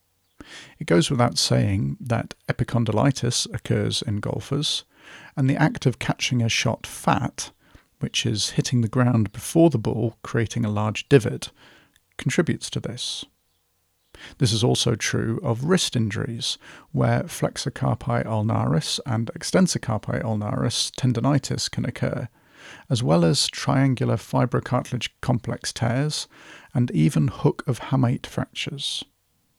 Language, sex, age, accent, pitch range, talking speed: English, male, 40-59, British, 110-135 Hz, 130 wpm